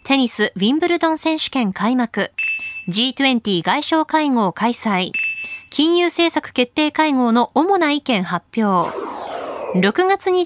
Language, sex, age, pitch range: Japanese, female, 20-39, 205-305 Hz